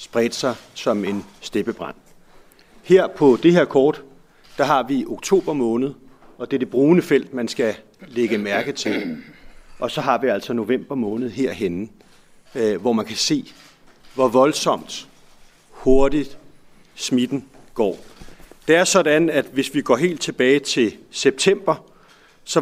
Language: Danish